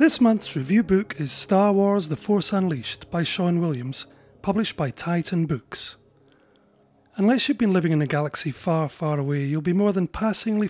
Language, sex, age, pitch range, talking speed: English, male, 30-49, 145-200 Hz, 180 wpm